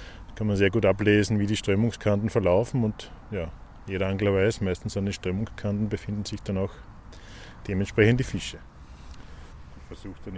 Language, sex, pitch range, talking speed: German, male, 90-115 Hz, 160 wpm